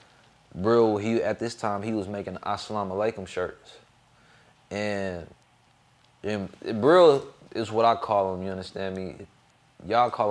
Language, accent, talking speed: English, American, 135 wpm